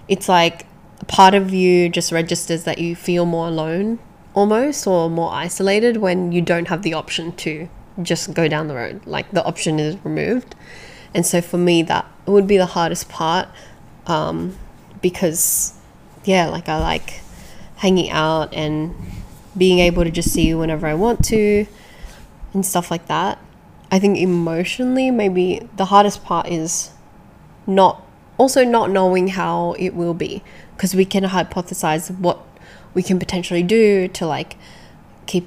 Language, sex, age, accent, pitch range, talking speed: English, female, 10-29, Australian, 165-190 Hz, 160 wpm